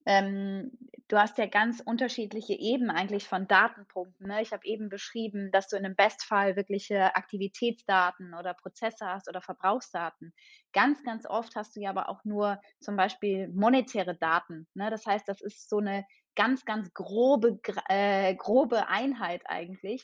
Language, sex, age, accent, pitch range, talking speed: German, female, 20-39, German, 195-225 Hz, 155 wpm